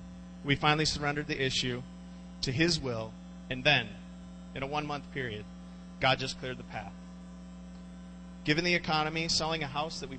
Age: 30-49